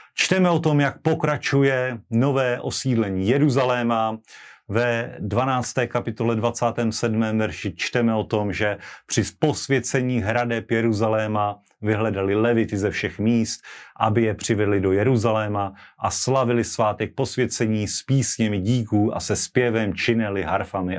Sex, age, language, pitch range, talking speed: male, 40-59, Slovak, 105-120 Hz, 125 wpm